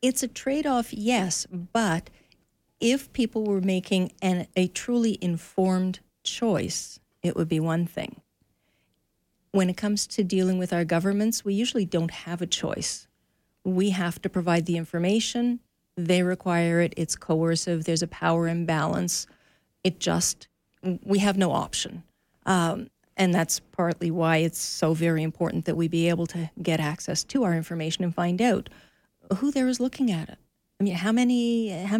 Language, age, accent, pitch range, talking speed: English, 50-69, American, 175-215 Hz, 160 wpm